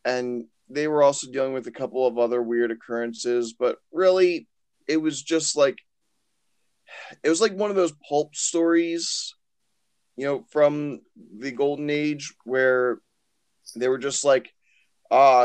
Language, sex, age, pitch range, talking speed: English, male, 20-39, 120-150 Hz, 150 wpm